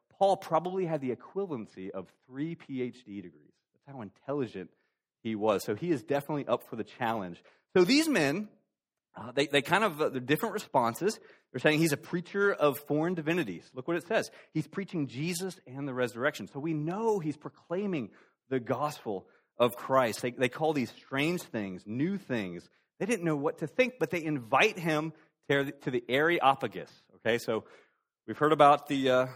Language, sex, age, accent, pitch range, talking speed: English, male, 30-49, American, 120-165 Hz, 180 wpm